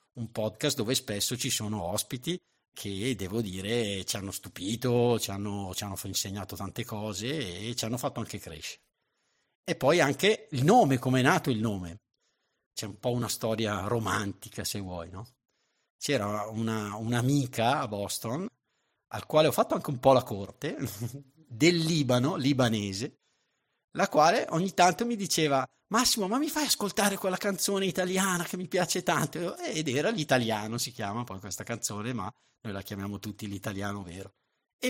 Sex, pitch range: male, 105-140 Hz